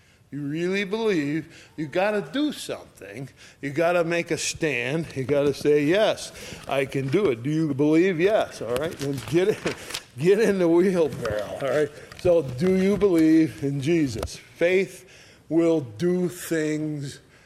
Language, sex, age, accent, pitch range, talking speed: English, male, 50-69, American, 130-170 Hz, 165 wpm